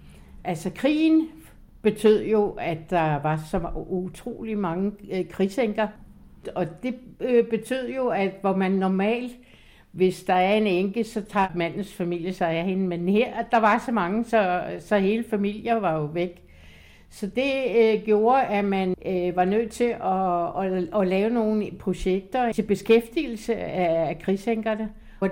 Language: Danish